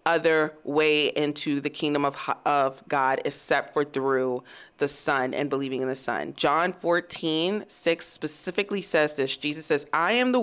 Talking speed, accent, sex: 165 wpm, American, female